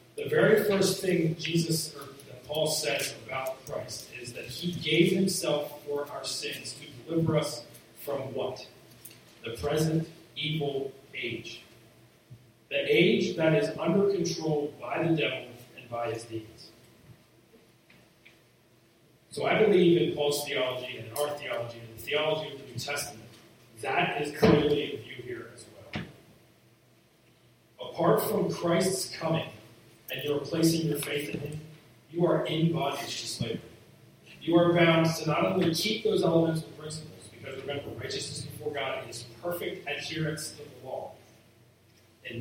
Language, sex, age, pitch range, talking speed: English, male, 40-59, 125-165 Hz, 150 wpm